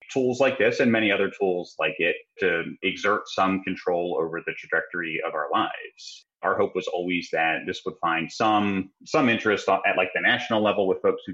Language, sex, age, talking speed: English, male, 30-49, 200 wpm